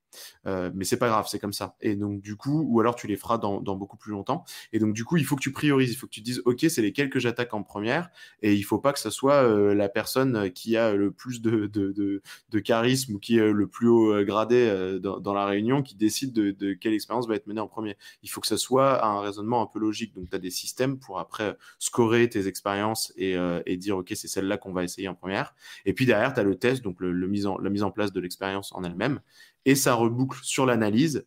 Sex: male